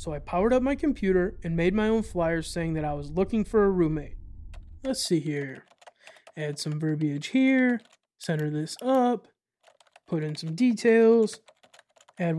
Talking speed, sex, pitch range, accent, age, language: 165 wpm, male, 155-225 Hz, American, 20-39, English